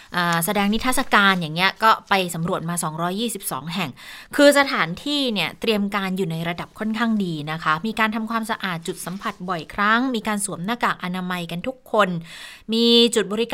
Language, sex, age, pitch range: Thai, female, 20-39, 170-225 Hz